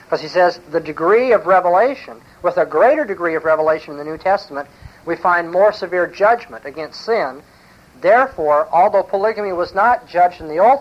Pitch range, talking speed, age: 150-185 Hz, 185 wpm, 50-69